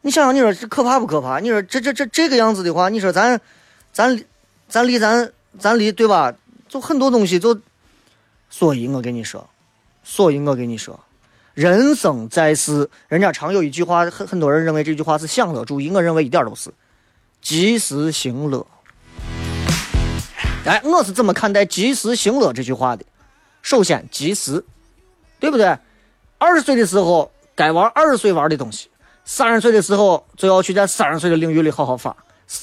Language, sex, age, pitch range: Chinese, male, 30-49, 150-225 Hz